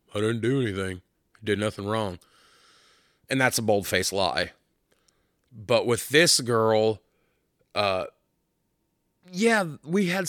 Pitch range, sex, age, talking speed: 95-125 Hz, male, 30-49, 115 wpm